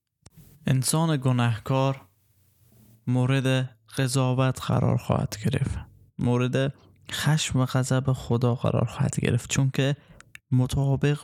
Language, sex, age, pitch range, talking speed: Persian, male, 20-39, 115-135 Hz, 95 wpm